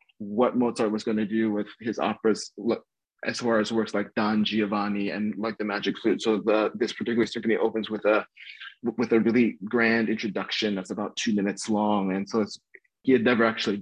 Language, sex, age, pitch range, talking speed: English, male, 20-39, 105-120 Hz, 200 wpm